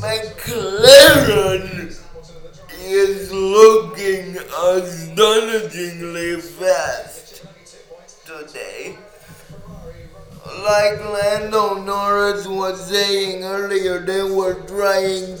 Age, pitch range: 20-39, 185-220 Hz